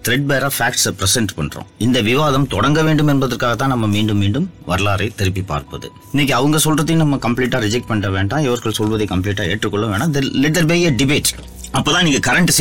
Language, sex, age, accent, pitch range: Tamil, male, 30-49, native, 90-125 Hz